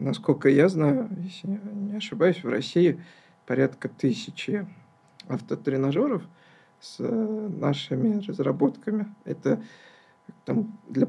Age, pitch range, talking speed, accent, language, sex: 50-69, 160-220 Hz, 85 wpm, native, Russian, male